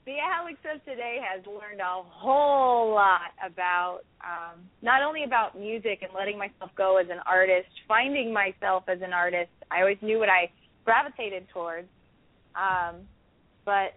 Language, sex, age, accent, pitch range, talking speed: English, female, 20-39, American, 185-235 Hz, 155 wpm